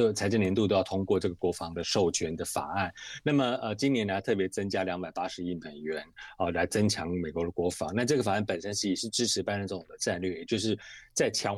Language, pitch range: Chinese, 95-115 Hz